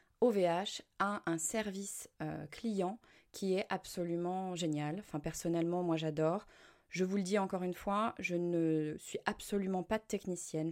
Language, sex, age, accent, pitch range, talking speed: French, female, 20-39, French, 170-215 Hz, 150 wpm